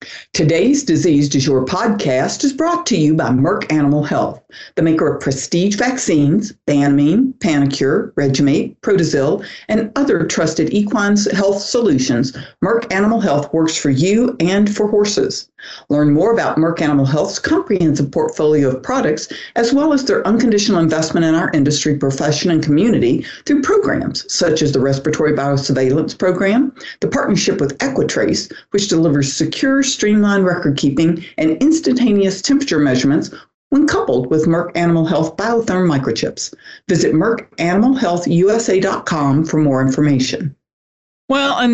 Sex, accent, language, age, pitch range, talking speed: female, American, English, 60-79, 145-215 Hz, 135 wpm